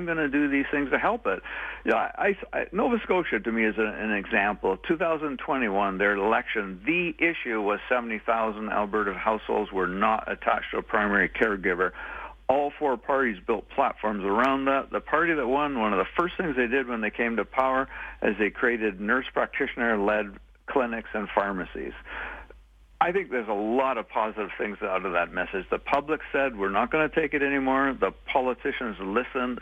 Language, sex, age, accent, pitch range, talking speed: English, male, 50-69, American, 110-145 Hz, 185 wpm